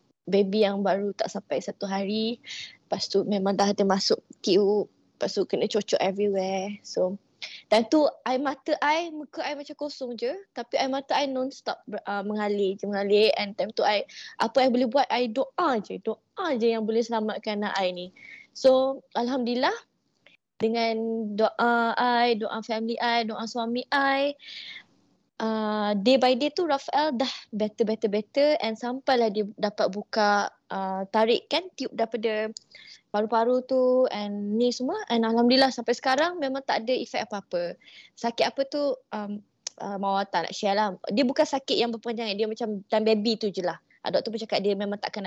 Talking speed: 175 wpm